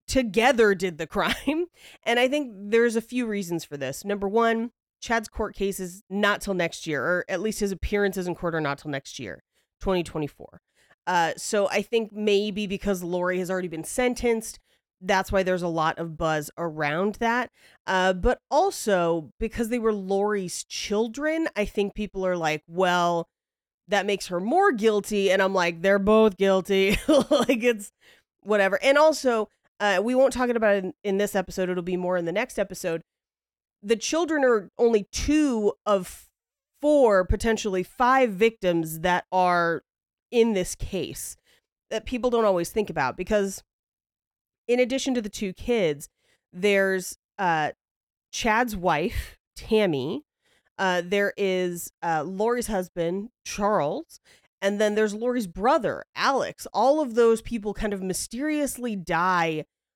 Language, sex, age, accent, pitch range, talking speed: English, female, 30-49, American, 185-235 Hz, 155 wpm